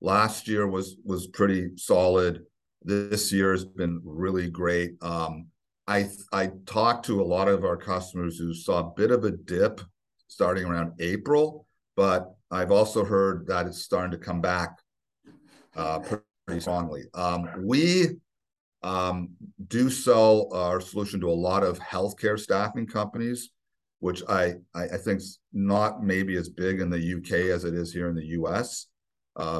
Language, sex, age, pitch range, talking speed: English, male, 50-69, 85-100 Hz, 160 wpm